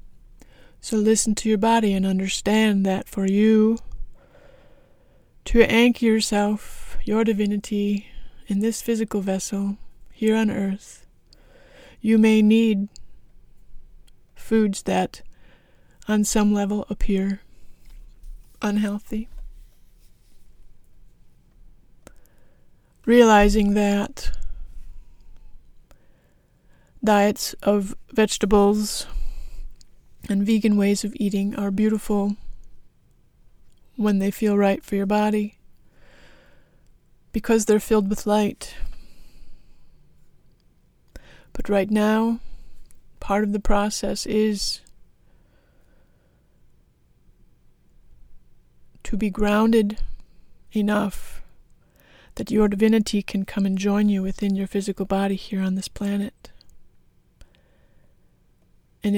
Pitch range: 195-215 Hz